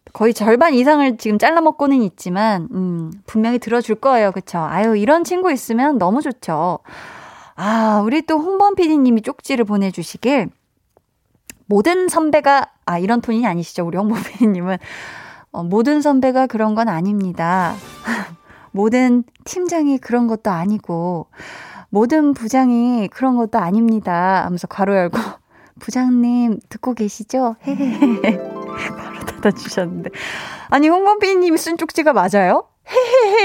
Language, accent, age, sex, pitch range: Korean, native, 20-39, female, 205-285 Hz